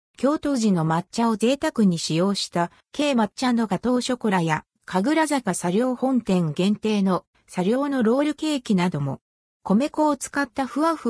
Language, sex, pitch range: Japanese, female, 170-260 Hz